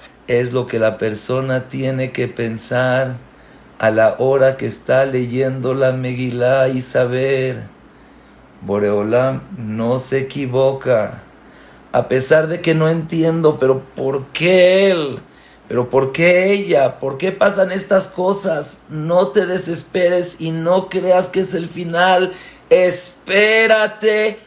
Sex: male